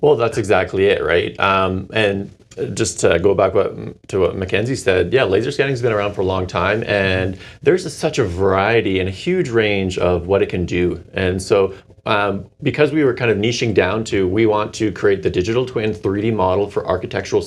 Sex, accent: male, American